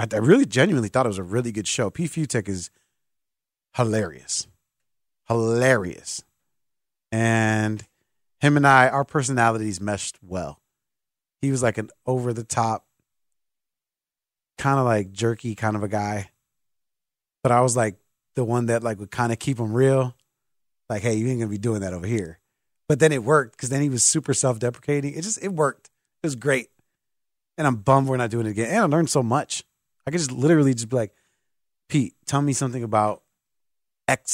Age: 30-49